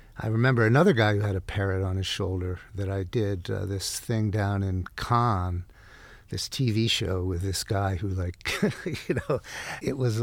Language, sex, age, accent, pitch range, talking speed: English, male, 50-69, American, 95-120 Hz, 190 wpm